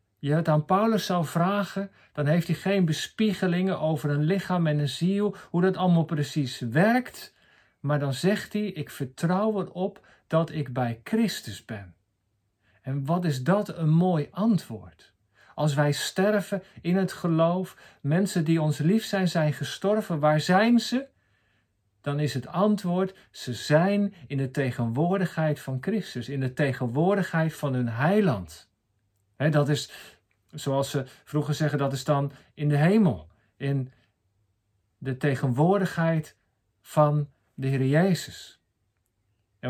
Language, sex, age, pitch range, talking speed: Dutch, male, 50-69, 130-180 Hz, 140 wpm